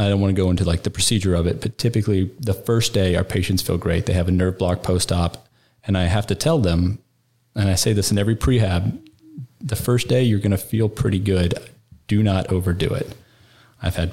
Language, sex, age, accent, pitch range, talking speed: English, male, 30-49, American, 95-120 Hz, 230 wpm